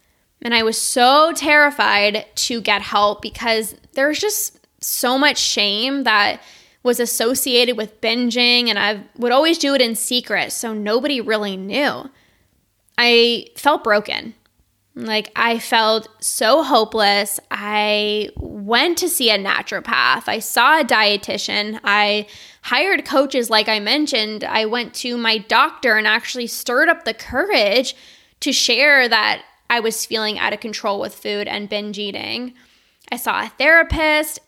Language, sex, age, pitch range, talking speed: English, female, 10-29, 215-260 Hz, 145 wpm